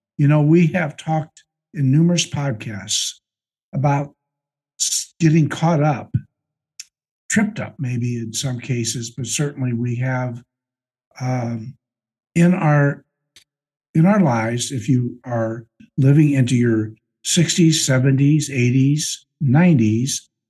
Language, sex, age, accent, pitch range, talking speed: English, male, 60-79, American, 120-155 Hz, 110 wpm